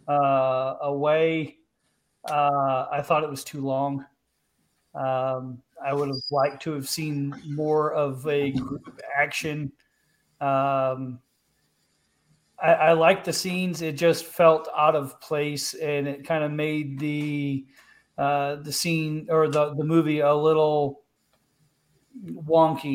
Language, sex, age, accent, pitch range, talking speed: English, male, 40-59, American, 135-155 Hz, 130 wpm